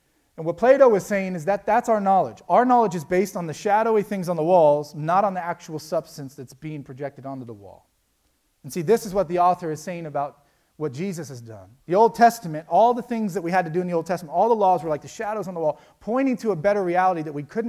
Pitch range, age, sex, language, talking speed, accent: 145-185 Hz, 30-49, male, English, 270 wpm, American